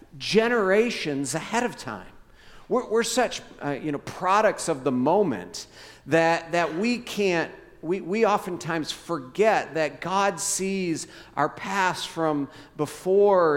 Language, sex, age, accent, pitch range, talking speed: English, male, 50-69, American, 145-190 Hz, 130 wpm